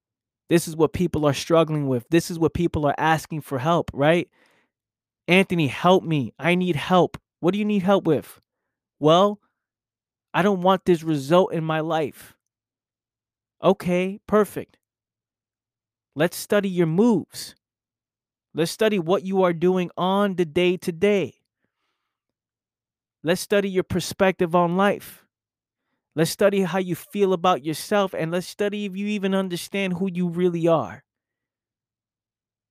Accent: American